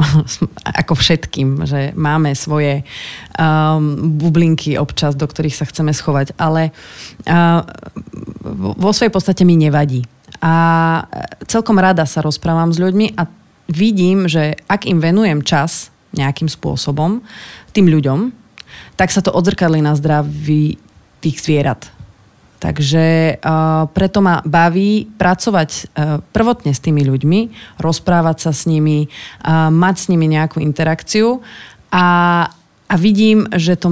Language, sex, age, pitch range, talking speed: Slovak, female, 30-49, 150-175 Hz, 125 wpm